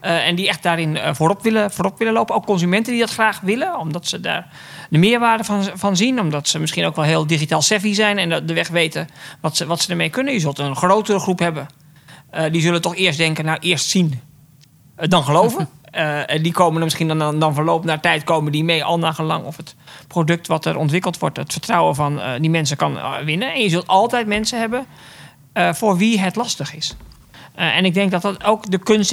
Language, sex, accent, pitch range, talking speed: Dutch, male, Dutch, 155-195 Hz, 240 wpm